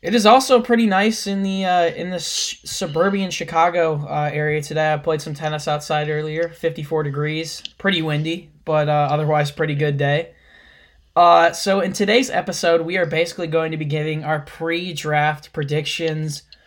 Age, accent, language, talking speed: 10-29, American, English, 170 wpm